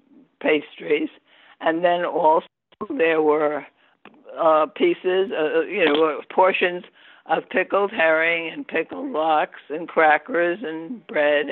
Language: English